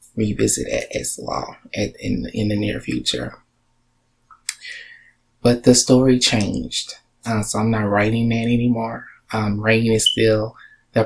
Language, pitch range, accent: English, 105-115 Hz, American